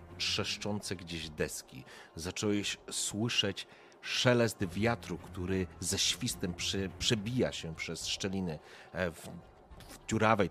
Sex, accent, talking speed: male, native, 95 wpm